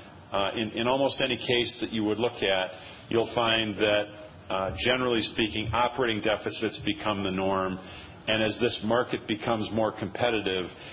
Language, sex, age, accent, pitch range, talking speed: English, male, 50-69, American, 100-120 Hz, 160 wpm